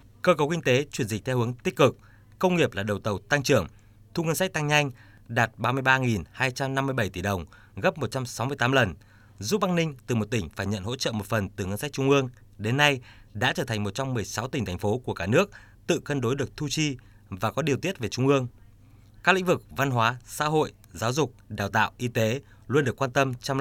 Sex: male